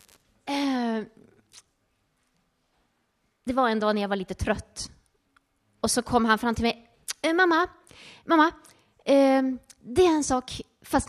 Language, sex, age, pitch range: Swedish, female, 20-39, 205-300 Hz